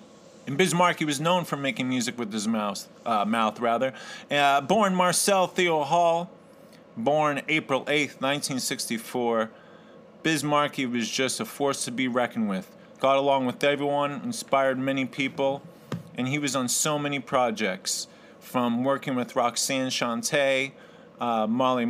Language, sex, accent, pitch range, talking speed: English, male, American, 125-155 Hz, 150 wpm